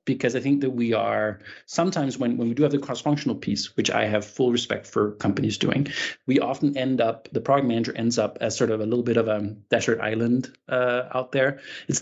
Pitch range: 115-135 Hz